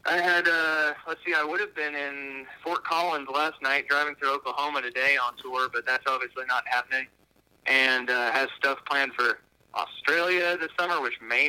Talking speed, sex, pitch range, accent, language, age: 195 wpm, male, 130-155 Hz, American, English, 30-49